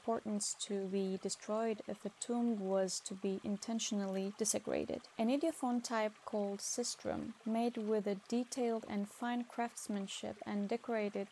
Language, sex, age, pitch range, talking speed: English, female, 20-39, 200-235 Hz, 140 wpm